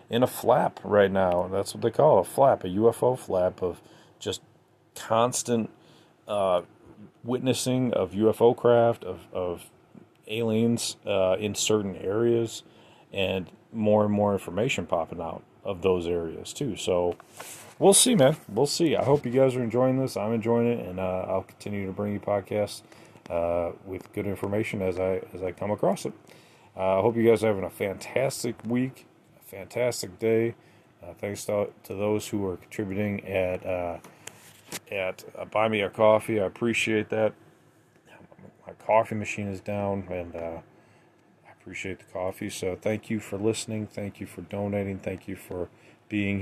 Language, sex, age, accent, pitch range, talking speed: English, male, 30-49, American, 95-115 Hz, 165 wpm